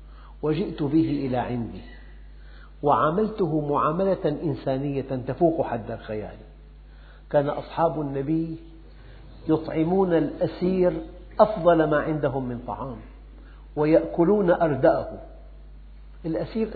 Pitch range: 120-165 Hz